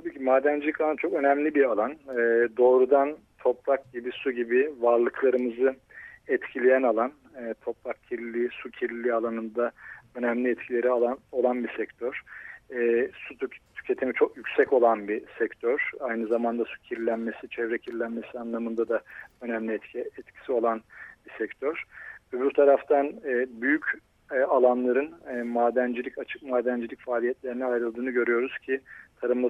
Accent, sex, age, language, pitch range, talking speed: native, male, 40-59, Turkish, 120-135 Hz, 120 wpm